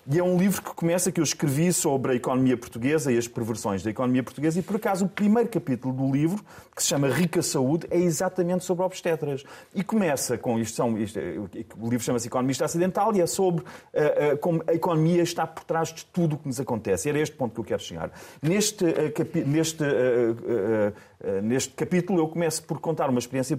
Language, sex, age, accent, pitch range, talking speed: Portuguese, male, 30-49, Portuguese, 135-185 Hz, 220 wpm